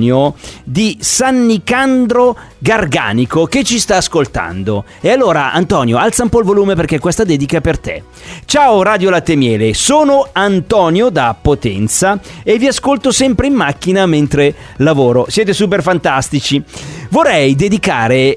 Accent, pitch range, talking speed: native, 135-225 Hz, 140 wpm